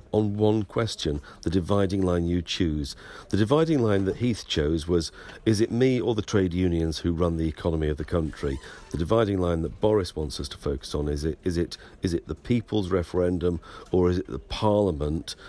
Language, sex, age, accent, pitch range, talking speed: English, male, 50-69, British, 80-110 Hz, 205 wpm